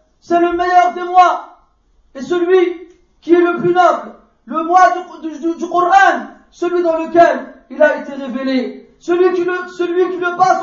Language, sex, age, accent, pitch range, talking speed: French, male, 40-59, French, 280-350 Hz, 185 wpm